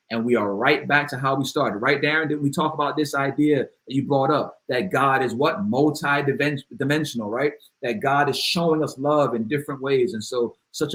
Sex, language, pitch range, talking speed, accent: male, English, 125-145 Hz, 215 wpm, American